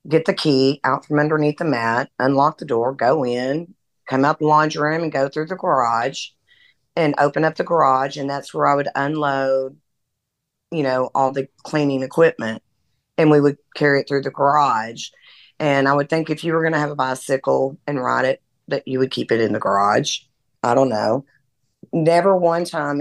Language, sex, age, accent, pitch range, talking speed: English, female, 40-59, American, 130-155 Hz, 200 wpm